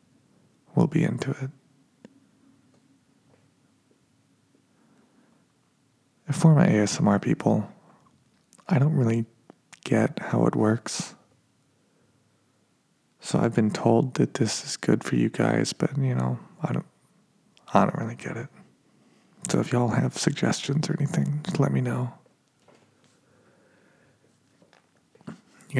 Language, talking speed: English, 115 wpm